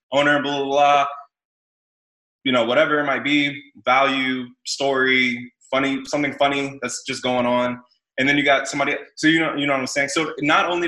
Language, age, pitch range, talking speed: English, 20-39, 120-145 Hz, 195 wpm